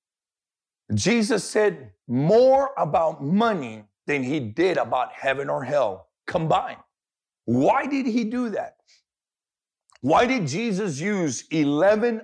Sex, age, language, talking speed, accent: male, 50-69, English, 115 wpm, American